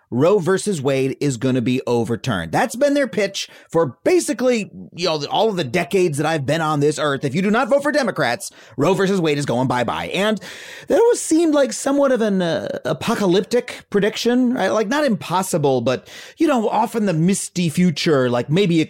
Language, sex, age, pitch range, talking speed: English, male, 30-49, 145-215 Hz, 205 wpm